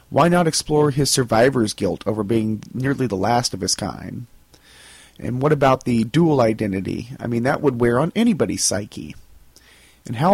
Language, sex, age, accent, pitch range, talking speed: English, male, 30-49, American, 115-160 Hz, 175 wpm